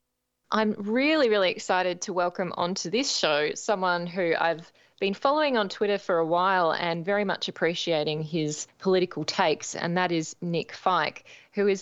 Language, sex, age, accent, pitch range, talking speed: English, female, 20-39, Australian, 165-220 Hz, 170 wpm